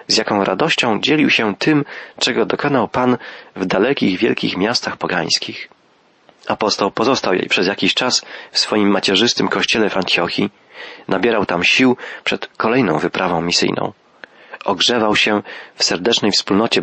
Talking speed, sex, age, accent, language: 135 wpm, male, 30-49, native, Polish